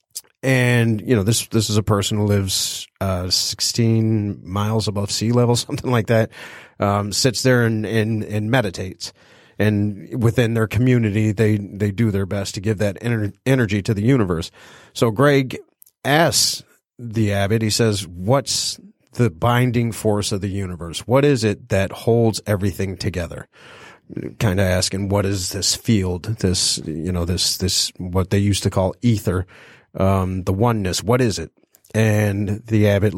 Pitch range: 100-115 Hz